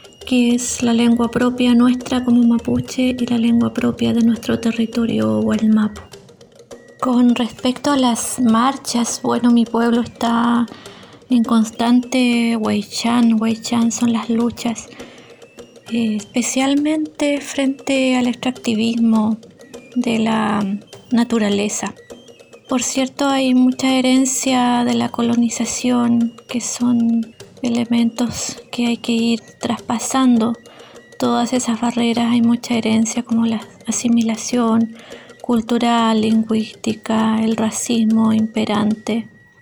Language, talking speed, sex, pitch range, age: English, 110 wpm, female, 230-250 Hz, 20-39